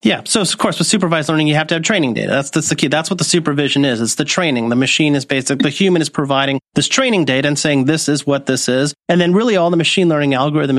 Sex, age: male, 30-49